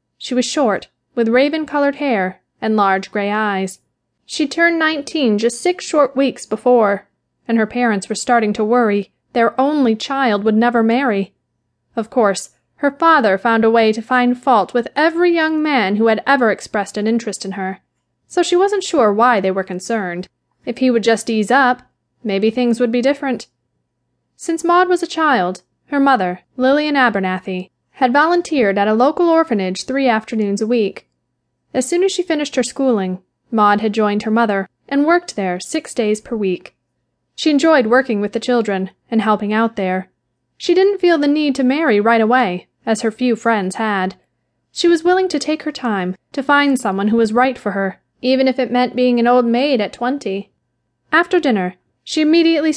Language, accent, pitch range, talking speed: English, American, 210-280 Hz, 185 wpm